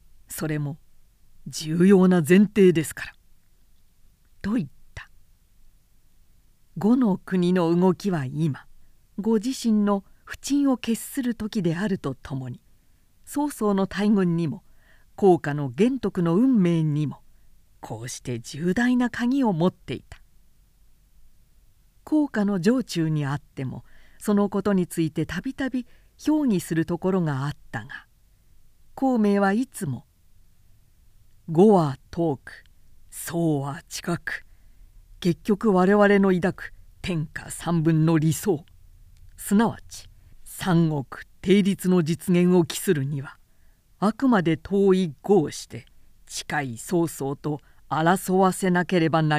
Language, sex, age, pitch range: Japanese, female, 50-69, 120-195 Hz